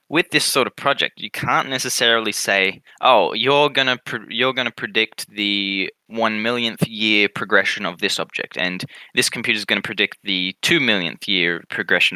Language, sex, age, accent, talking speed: English, male, 10-29, Australian, 175 wpm